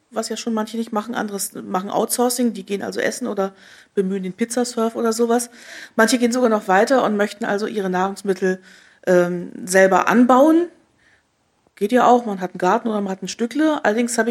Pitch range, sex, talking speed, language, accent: 195-235 Hz, female, 195 wpm, German, German